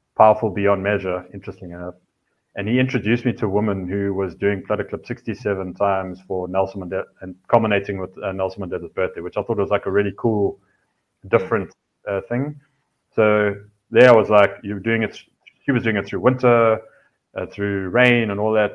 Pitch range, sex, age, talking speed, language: 95-110 Hz, male, 30-49, 190 wpm, English